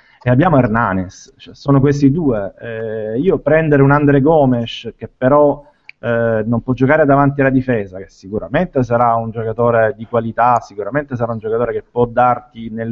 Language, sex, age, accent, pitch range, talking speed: Italian, male, 30-49, native, 115-140 Hz, 170 wpm